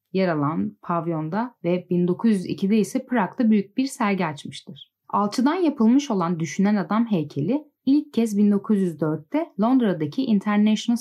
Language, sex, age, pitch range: Turkish, female, 10-29, 170-235 Hz